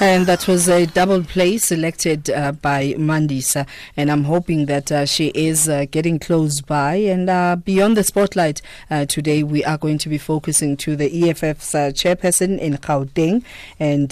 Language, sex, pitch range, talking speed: English, female, 145-175 Hz, 180 wpm